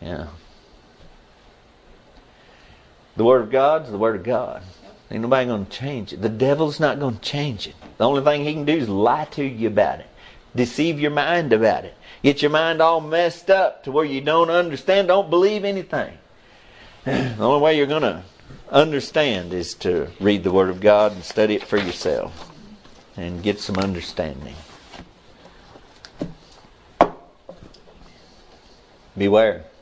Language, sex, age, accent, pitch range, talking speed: English, male, 50-69, American, 105-170 Hz, 155 wpm